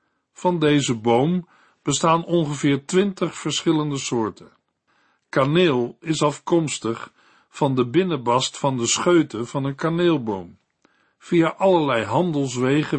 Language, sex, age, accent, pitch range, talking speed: Dutch, male, 60-79, Dutch, 130-175 Hz, 105 wpm